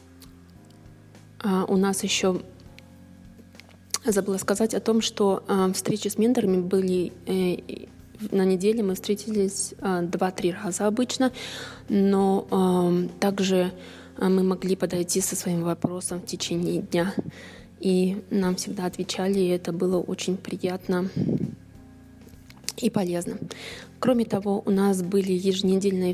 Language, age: Russian, 20-39